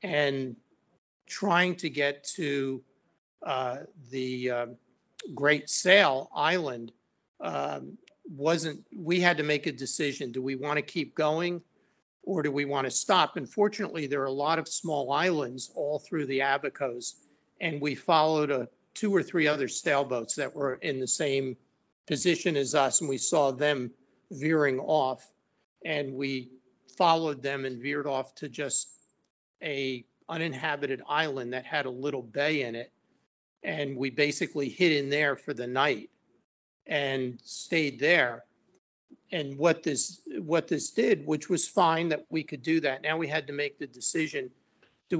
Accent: American